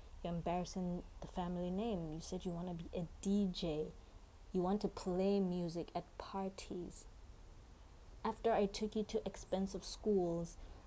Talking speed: 145 wpm